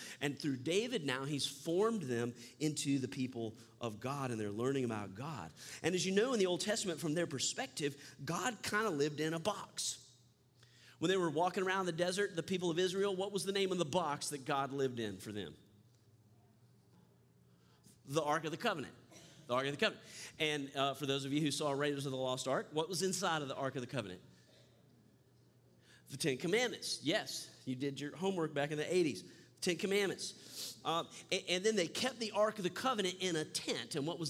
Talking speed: 215 wpm